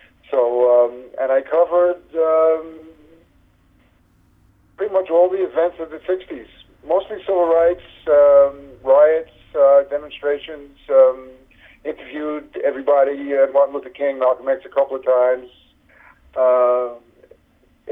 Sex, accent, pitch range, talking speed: male, American, 125-170 Hz, 115 wpm